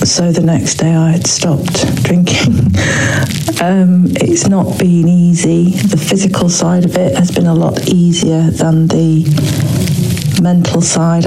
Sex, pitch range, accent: female, 145-175 Hz, British